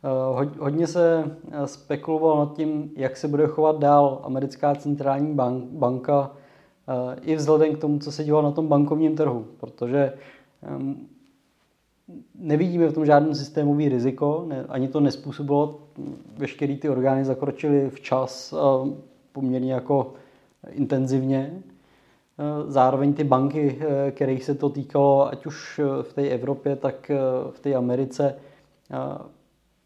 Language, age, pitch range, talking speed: Czech, 20-39, 130-150 Hz, 135 wpm